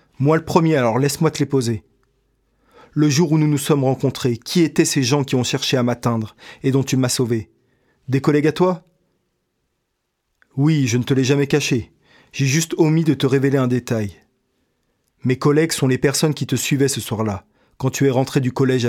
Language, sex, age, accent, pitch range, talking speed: French, male, 40-59, French, 125-150 Hz, 210 wpm